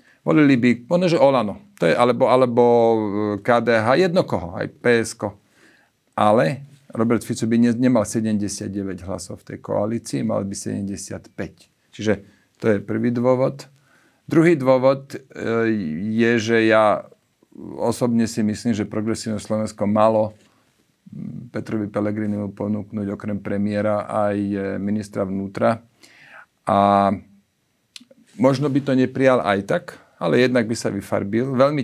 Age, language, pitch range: 50-69, Slovak, 105-120 Hz